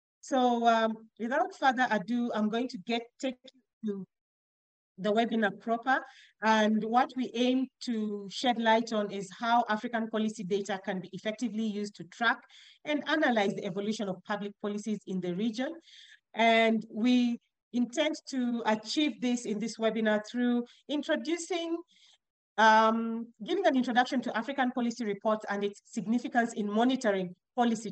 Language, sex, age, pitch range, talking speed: English, female, 40-59, 205-250 Hz, 145 wpm